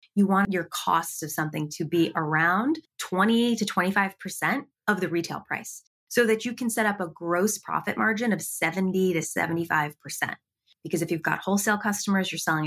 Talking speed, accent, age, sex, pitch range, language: 180 wpm, American, 20-39, female, 170-225 Hz, English